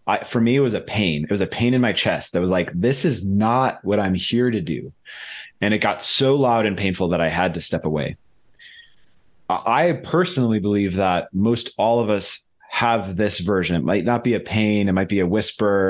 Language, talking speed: English, 225 wpm